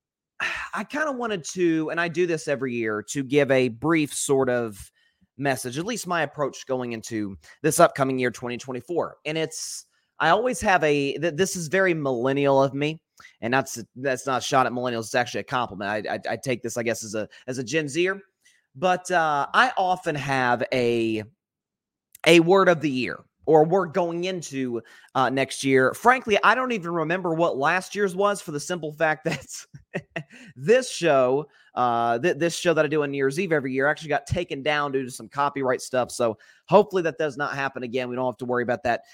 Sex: male